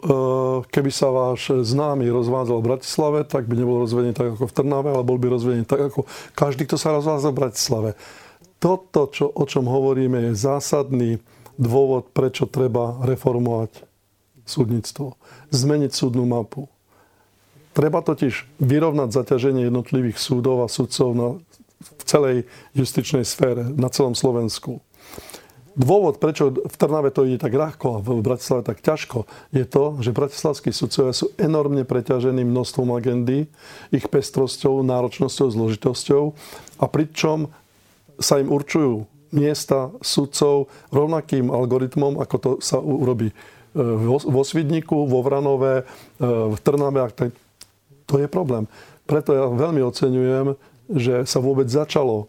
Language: Slovak